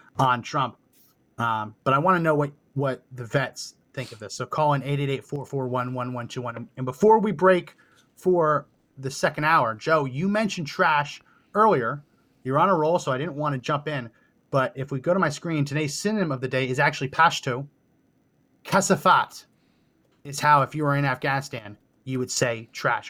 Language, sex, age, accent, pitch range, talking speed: English, male, 30-49, American, 130-165 Hz, 185 wpm